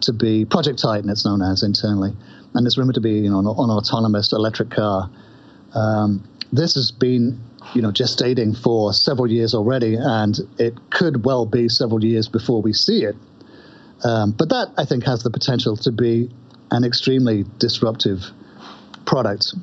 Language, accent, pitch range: English, British, 110-135 Hz